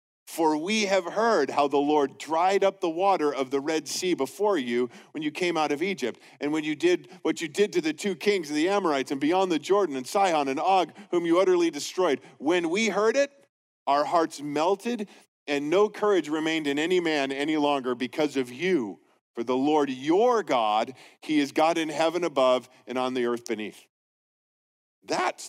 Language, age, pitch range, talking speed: English, 40-59, 145-205 Hz, 200 wpm